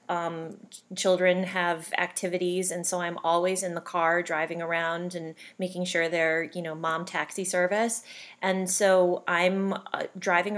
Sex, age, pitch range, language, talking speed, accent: female, 30-49, 175-205 Hz, English, 155 wpm, American